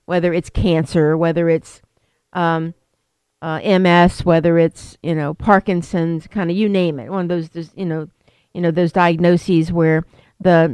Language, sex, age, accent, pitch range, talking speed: English, female, 50-69, American, 160-185 Hz, 160 wpm